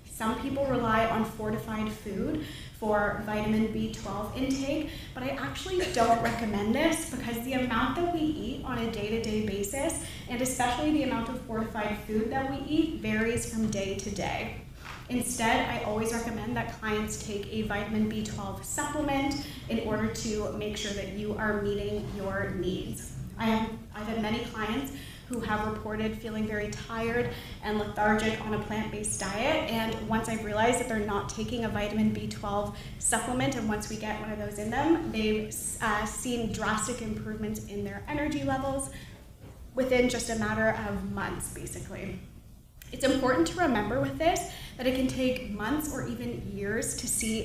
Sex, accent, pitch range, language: female, American, 210-250 Hz, English